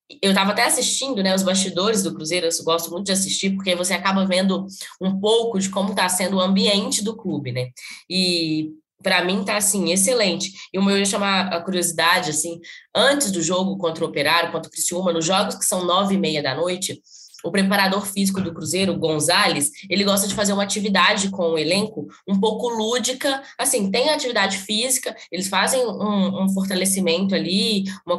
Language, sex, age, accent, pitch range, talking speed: Portuguese, female, 10-29, Brazilian, 180-220 Hz, 195 wpm